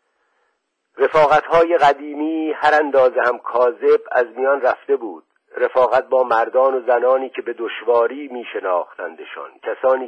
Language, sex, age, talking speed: Persian, male, 50-69, 120 wpm